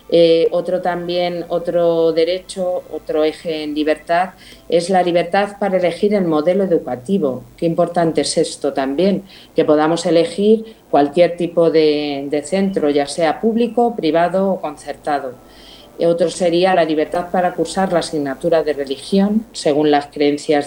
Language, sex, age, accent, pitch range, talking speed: Spanish, female, 40-59, Spanish, 150-190 Hz, 140 wpm